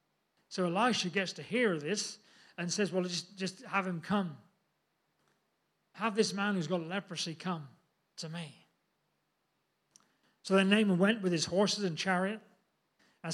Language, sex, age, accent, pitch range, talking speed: English, male, 40-59, British, 175-215 Hz, 150 wpm